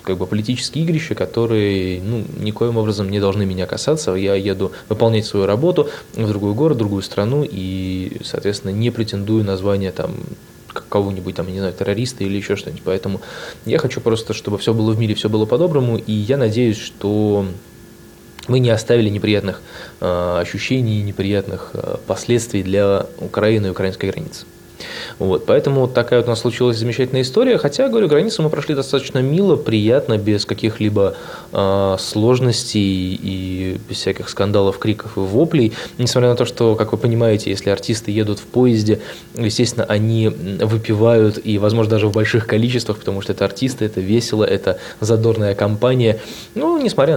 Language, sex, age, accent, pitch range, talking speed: Russian, male, 20-39, native, 100-120 Hz, 160 wpm